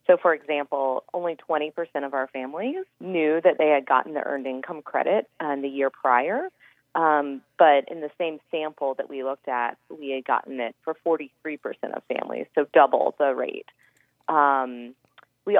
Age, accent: 30-49, American